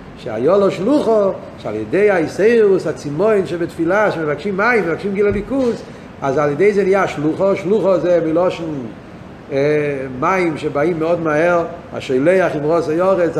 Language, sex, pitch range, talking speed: Hebrew, male, 160-195 Hz, 130 wpm